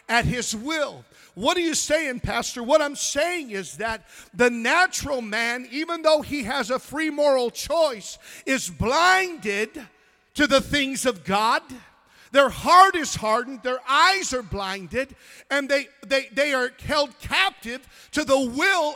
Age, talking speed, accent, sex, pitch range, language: 50-69, 155 wpm, American, male, 235-315 Hz, English